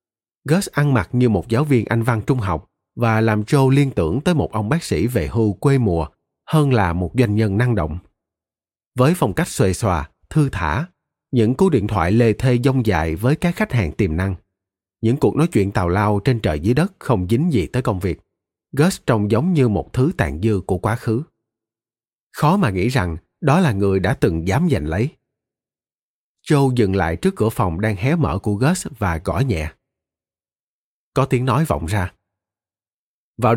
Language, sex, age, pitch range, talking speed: Vietnamese, male, 30-49, 100-135 Hz, 200 wpm